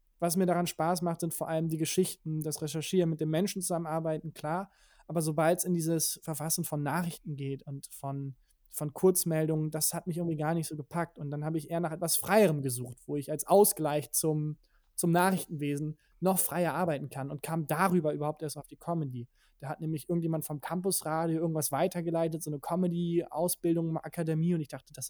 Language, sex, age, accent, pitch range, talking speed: German, male, 20-39, German, 145-170 Hz, 195 wpm